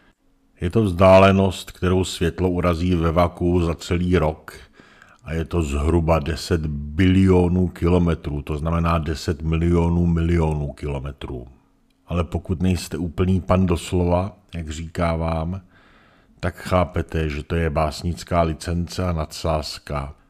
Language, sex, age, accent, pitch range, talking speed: Czech, male, 50-69, native, 85-95 Hz, 125 wpm